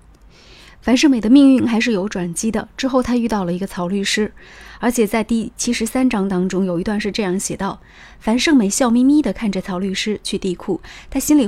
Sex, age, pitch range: female, 20-39, 190-245 Hz